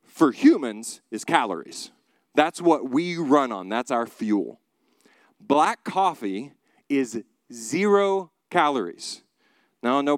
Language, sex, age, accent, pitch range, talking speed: English, male, 40-59, American, 130-210 Hz, 120 wpm